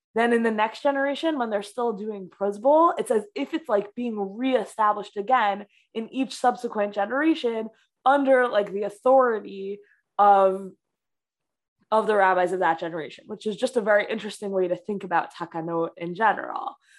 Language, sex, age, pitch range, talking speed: English, female, 20-39, 190-245 Hz, 165 wpm